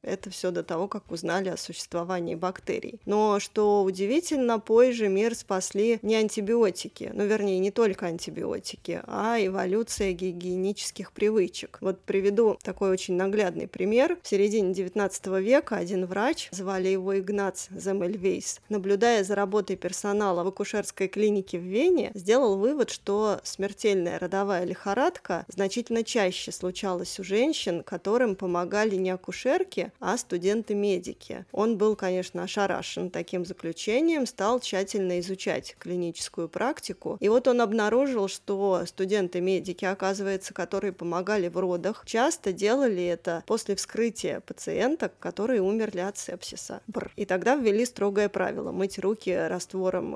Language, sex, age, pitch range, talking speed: Russian, female, 20-39, 185-215 Hz, 135 wpm